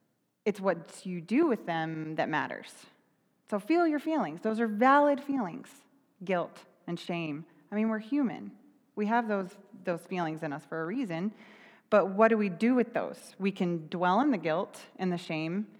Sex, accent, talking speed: female, American, 185 wpm